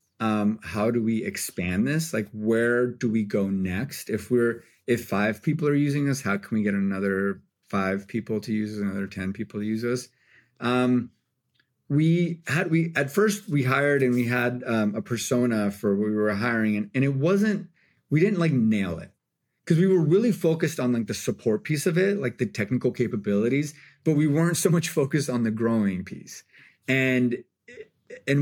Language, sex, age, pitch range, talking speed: English, male, 30-49, 105-145 Hz, 195 wpm